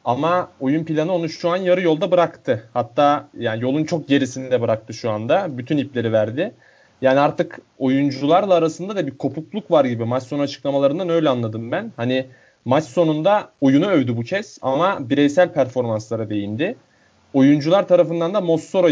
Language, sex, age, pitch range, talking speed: Turkish, male, 30-49, 130-170 Hz, 160 wpm